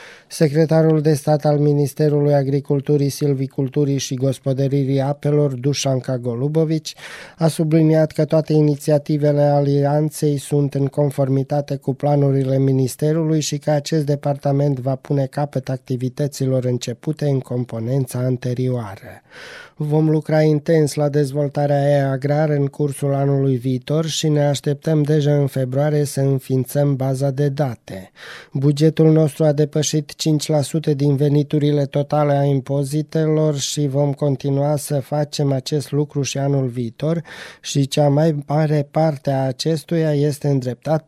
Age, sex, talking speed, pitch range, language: 20-39, male, 125 wpm, 135-150 Hz, Romanian